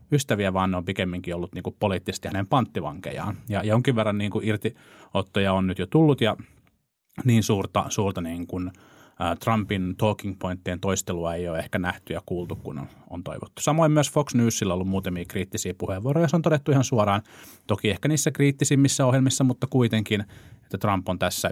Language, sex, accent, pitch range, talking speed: Finnish, male, native, 90-120 Hz, 195 wpm